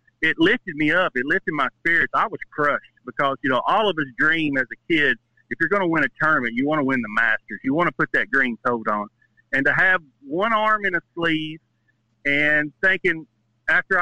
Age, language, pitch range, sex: 50-69, English, 130-170 Hz, male